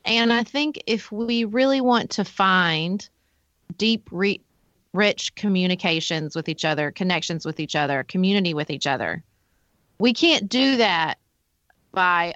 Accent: American